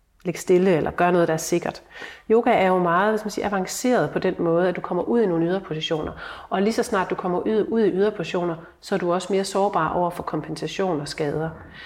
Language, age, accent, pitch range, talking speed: Danish, 40-59, native, 165-205 Hz, 250 wpm